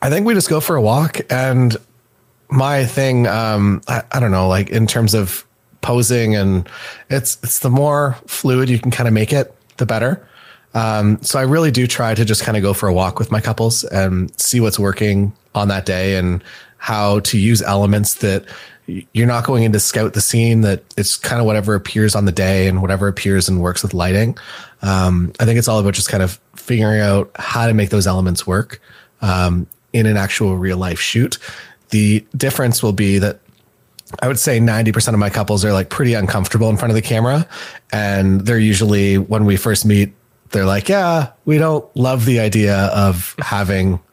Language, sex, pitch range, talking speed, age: English, male, 100-120 Hz, 205 wpm, 30-49